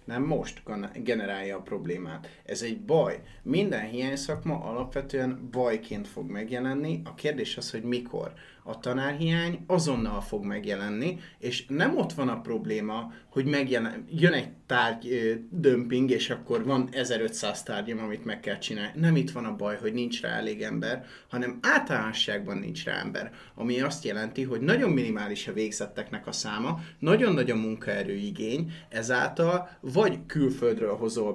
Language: Hungarian